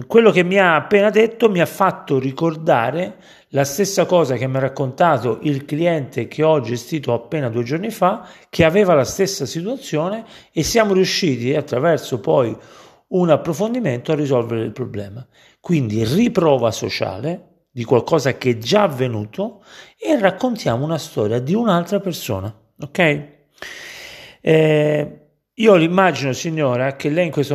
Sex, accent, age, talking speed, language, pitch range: male, native, 40-59, 145 wpm, Italian, 130-175 Hz